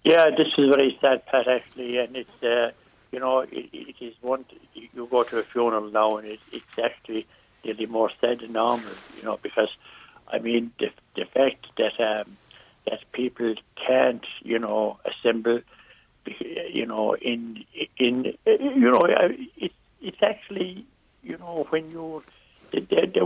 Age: 60-79